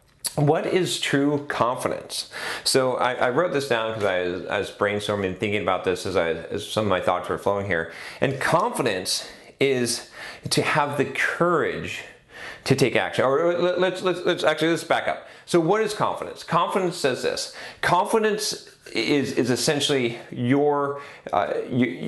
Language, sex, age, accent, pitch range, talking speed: English, male, 30-49, American, 115-165 Hz, 165 wpm